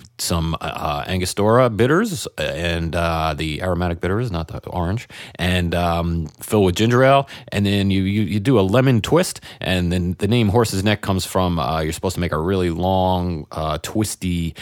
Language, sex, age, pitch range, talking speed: English, male, 30-49, 85-105 Hz, 185 wpm